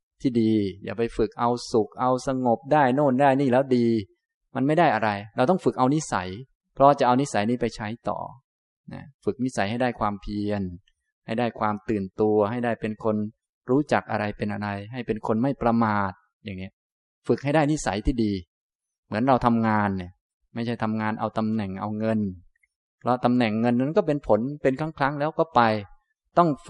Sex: male